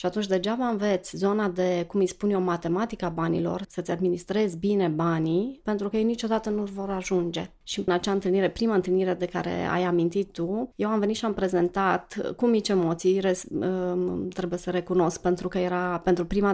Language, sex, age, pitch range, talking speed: Romanian, female, 30-49, 180-205 Hz, 185 wpm